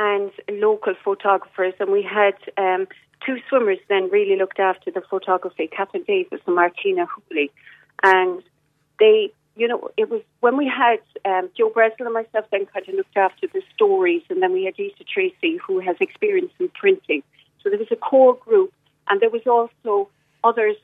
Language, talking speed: English, 180 wpm